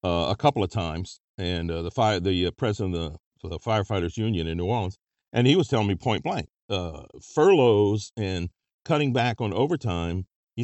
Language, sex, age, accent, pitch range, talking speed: English, male, 50-69, American, 100-130 Hz, 205 wpm